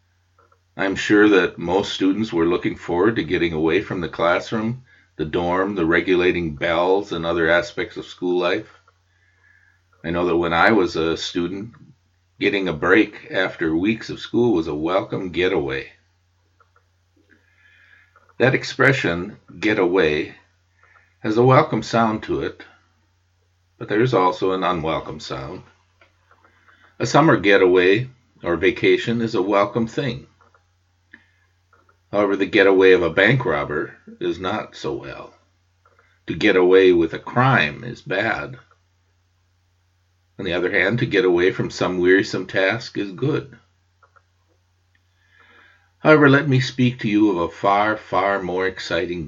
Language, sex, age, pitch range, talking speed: English, male, 50-69, 90-110 Hz, 140 wpm